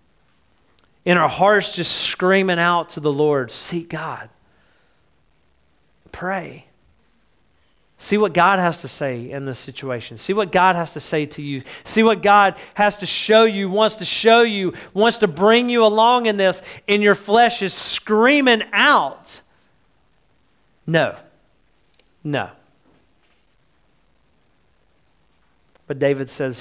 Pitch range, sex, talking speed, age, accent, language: 125-175 Hz, male, 130 wpm, 40-59, American, English